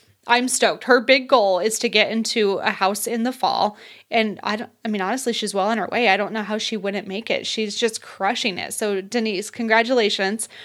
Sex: female